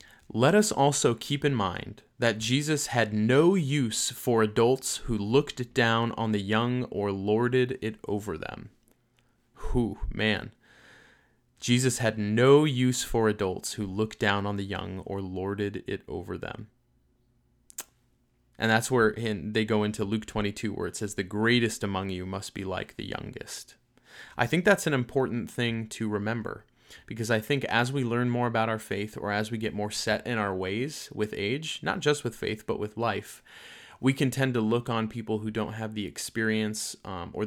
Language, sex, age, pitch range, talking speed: English, male, 20-39, 105-120 Hz, 180 wpm